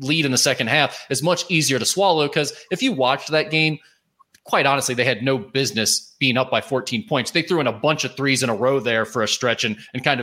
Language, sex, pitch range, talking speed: English, male, 115-145 Hz, 260 wpm